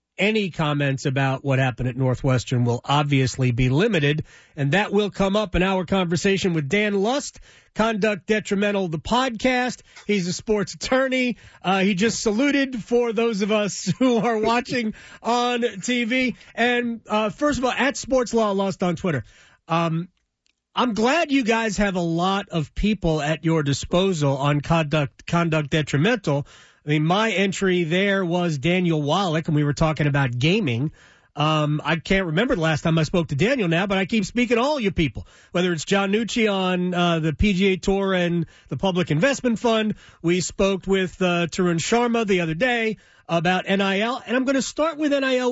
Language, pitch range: English, 165-230 Hz